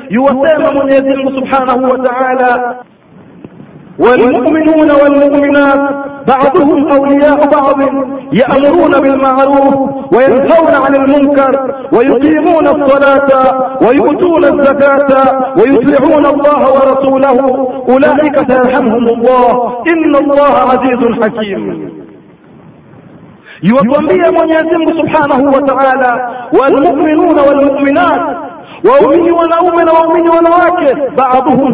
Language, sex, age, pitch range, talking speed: Swahili, male, 50-69, 255-300 Hz, 75 wpm